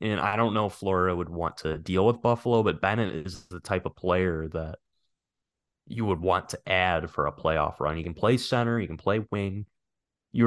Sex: male